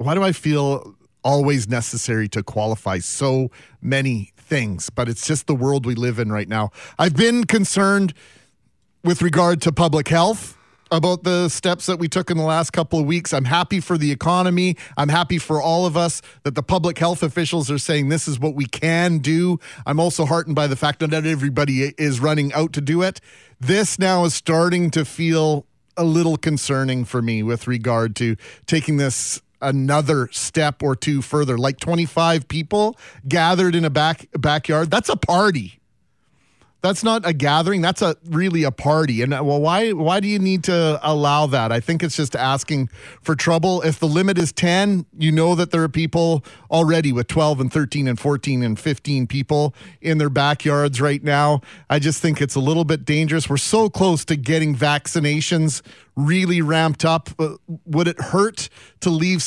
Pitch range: 140-170 Hz